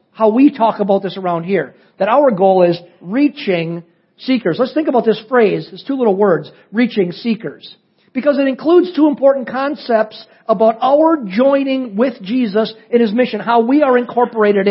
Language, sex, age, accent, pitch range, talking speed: English, male, 50-69, American, 205-270 Hz, 170 wpm